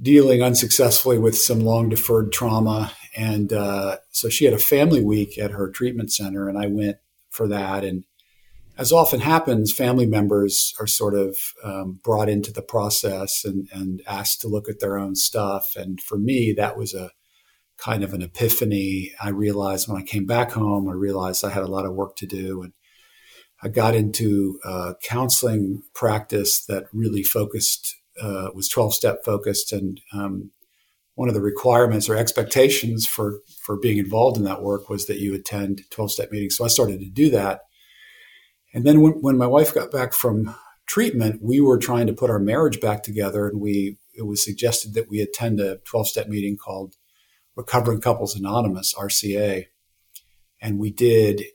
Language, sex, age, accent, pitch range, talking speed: English, male, 50-69, American, 100-115 Hz, 180 wpm